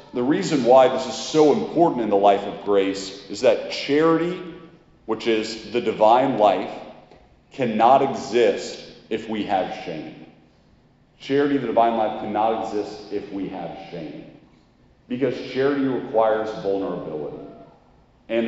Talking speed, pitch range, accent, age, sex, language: 135 wpm, 95-125 Hz, American, 40-59, male, English